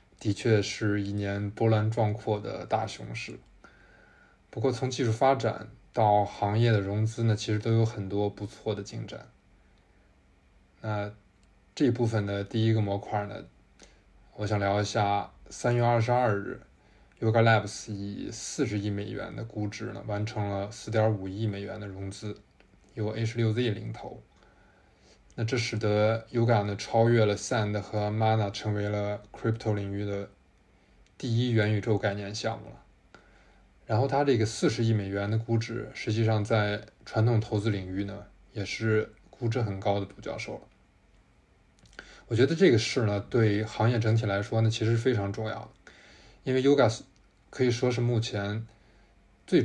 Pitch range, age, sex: 100-115 Hz, 20-39, male